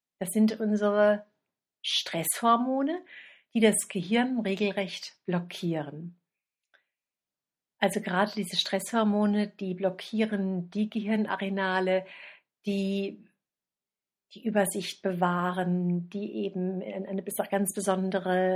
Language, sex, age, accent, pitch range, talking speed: German, female, 50-69, German, 185-210 Hz, 85 wpm